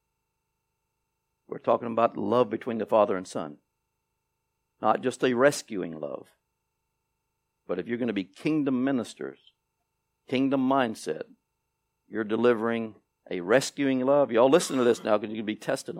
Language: English